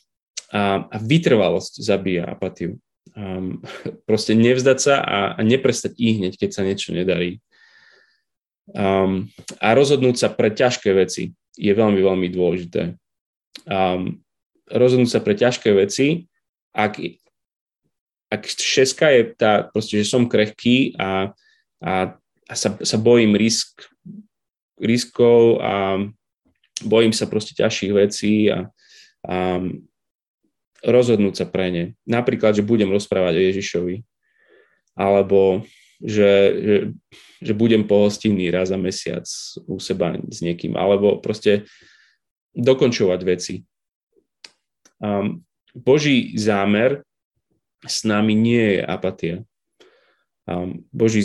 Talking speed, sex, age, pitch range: 110 wpm, male, 20-39, 95-115 Hz